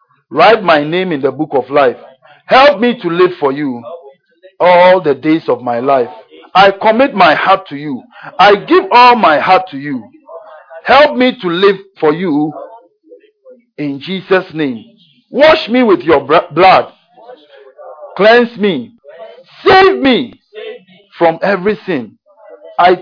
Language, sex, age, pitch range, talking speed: English, male, 50-69, 160-255 Hz, 145 wpm